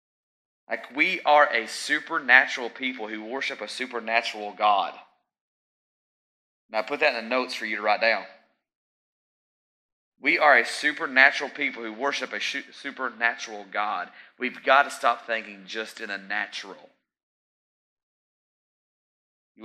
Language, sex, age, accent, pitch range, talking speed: English, male, 30-49, American, 105-135 Hz, 130 wpm